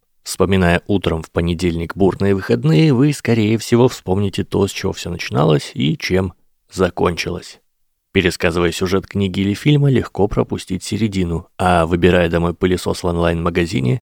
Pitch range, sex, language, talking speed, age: 85-105 Hz, male, Russian, 135 wpm, 20-39